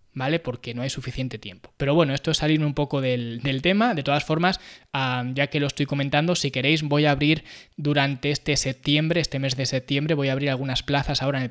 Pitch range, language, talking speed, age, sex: 135-170 Hz, Spanish, 235 wpm, 20-39, male